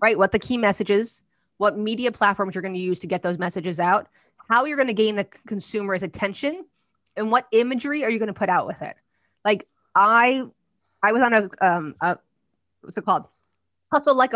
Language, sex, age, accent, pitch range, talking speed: English, female, 20-39, American, 195-230 Hz, 205 wpm